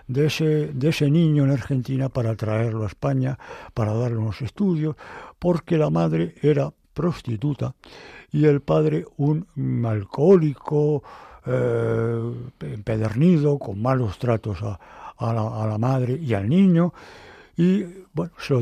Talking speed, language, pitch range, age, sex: 140 wpm, Spanish, 115-150 Hz, 60-79, male